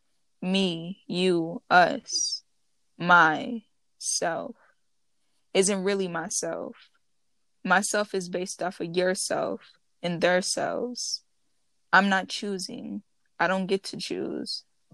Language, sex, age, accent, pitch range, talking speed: English, female, 10-29, American, 180-240 Hz, 100 wpm